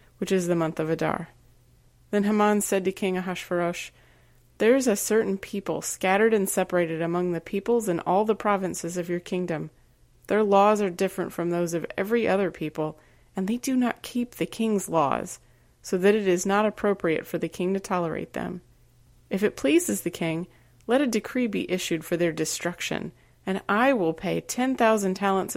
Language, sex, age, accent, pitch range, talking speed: English, female, 30-49, American, 165-200 Hz, 190 wpm